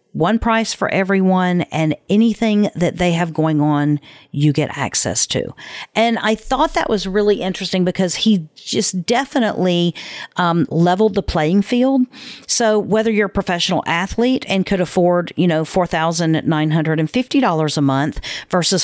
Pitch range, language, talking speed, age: 160-215 Hz, English, 145 wpm, 50-69